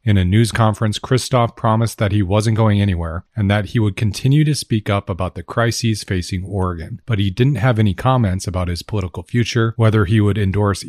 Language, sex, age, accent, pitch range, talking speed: English, male, 40-59, American, 90-110 Hz, 210 wpm